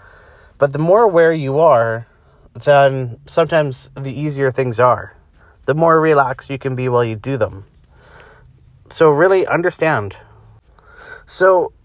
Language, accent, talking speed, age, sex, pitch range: English, American, 130 wpm, 30-49, male, 120-160 Hz